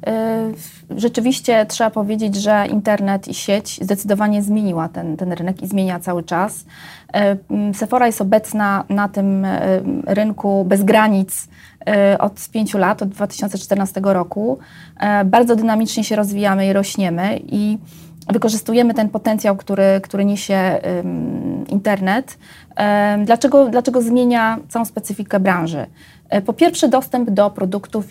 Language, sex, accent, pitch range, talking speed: Polish, female, native, 195-235 Hz, 115 wpm